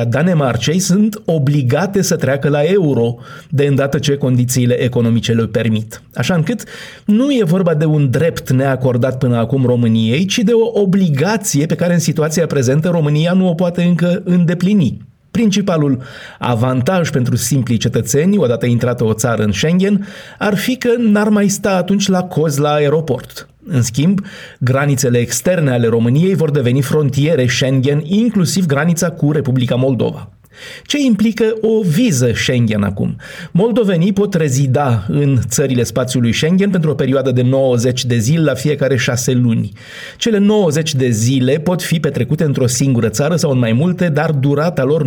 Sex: male